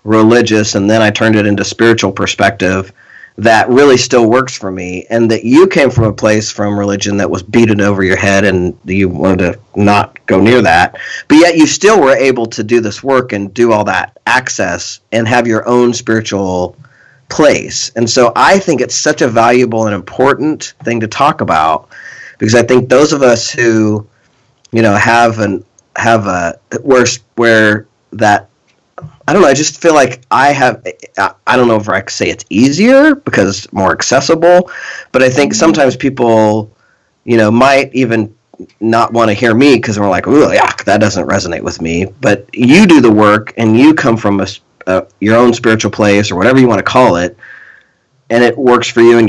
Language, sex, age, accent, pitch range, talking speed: English, male, 40-59, American, 105-125 Hz, 200 wpm